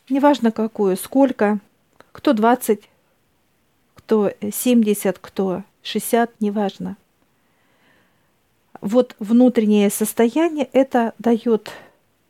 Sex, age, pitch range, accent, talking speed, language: female, 50-69, 210-255 Hz, native, 75 wpm, Russian